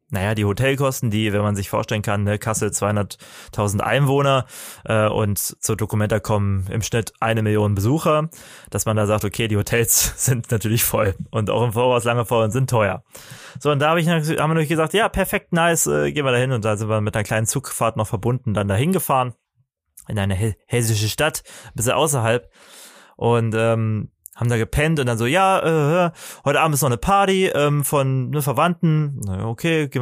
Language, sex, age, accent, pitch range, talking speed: German, male, 20-39, German, 110-140 Hz, 205 wpm